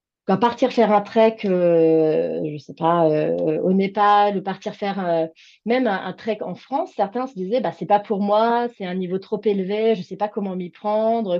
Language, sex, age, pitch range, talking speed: French, female, 30-49, 180-235 Hz, 225 wpm